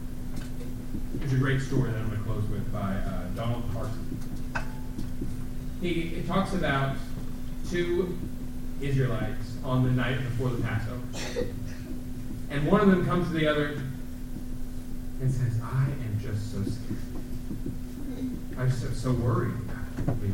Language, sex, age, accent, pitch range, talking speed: English, male, 30-49, American, 115-130 Hz, 125 wpm